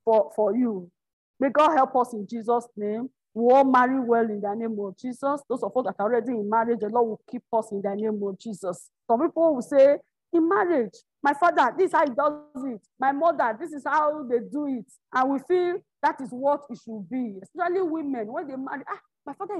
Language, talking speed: English, 235 wpm